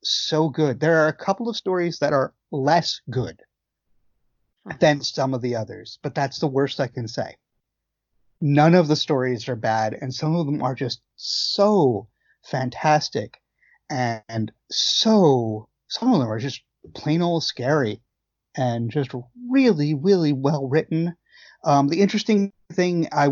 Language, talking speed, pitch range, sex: English, 150 wpm, 125-160 Hz, male